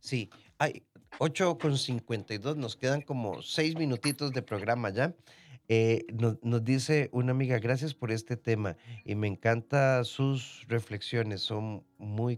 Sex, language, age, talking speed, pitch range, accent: male, Spanish, 40-59, 135 wpm, 105-135 Hz, Mexican